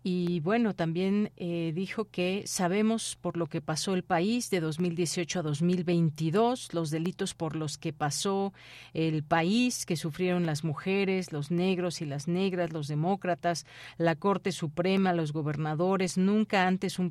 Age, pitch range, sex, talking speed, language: 40-59, 165-190 Hz, female, 155 wpm, Spanish